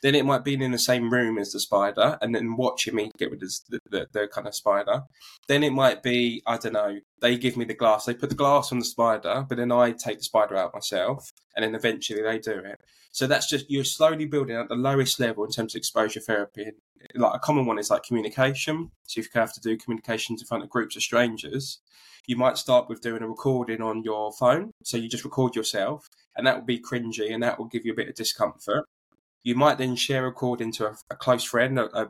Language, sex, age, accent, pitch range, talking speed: English, male, 10-29, British, 110-130 Hz, 250 wpm